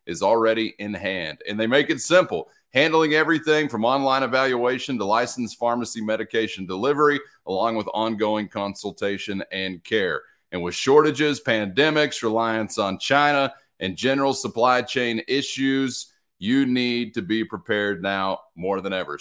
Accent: American